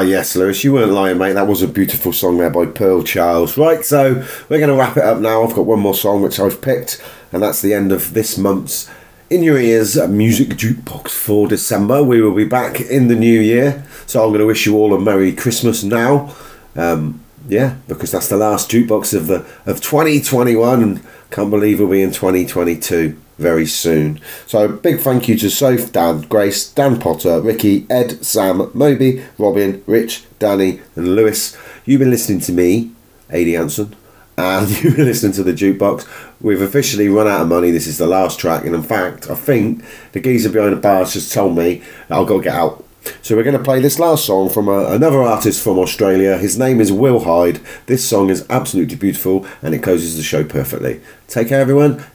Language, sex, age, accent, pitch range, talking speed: English, male, 40-59, British, 95-120 Hz, 205 wpm